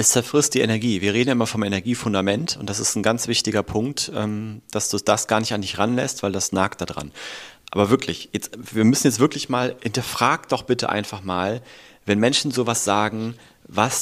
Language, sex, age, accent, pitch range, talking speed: German, male, 30-49, German, 105-135 Hz, 205 wpm